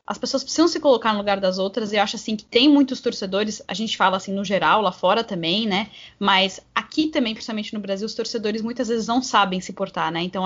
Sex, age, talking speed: female, 20-39, 245 wpm